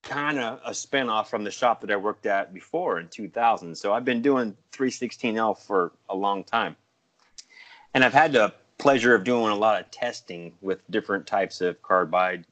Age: 30-49